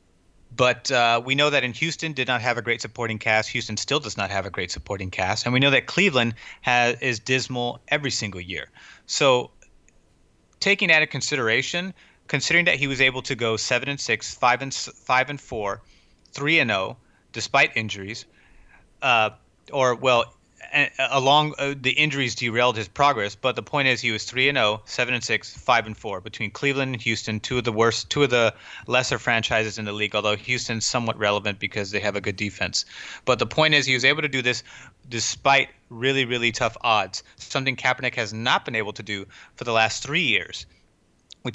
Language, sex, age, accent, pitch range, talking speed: English, male, 30-49, American, 110-135 Hz, 200 wpm